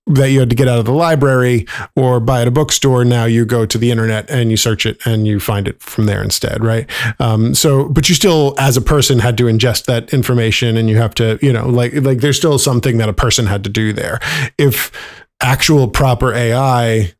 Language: English